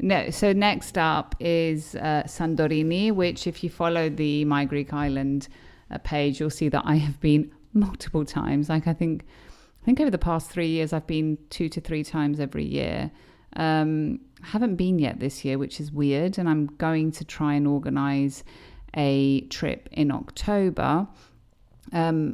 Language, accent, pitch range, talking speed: Greek, British, 150-180 Hz, 175 wpm